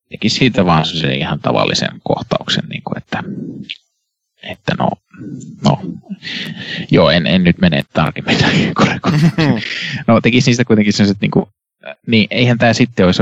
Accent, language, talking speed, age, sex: native, Finnish, 145 wpm, 30-49, male